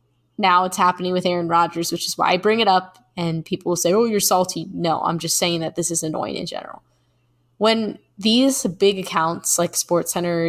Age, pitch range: 10-29, 165-220 Hz